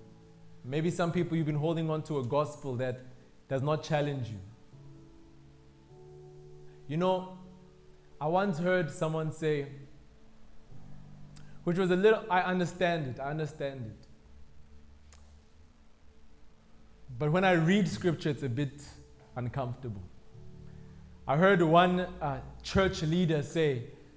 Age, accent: 20-39, South African